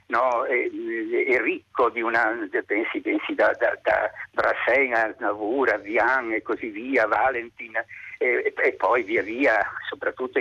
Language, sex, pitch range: Italian, male, 285-405 Hz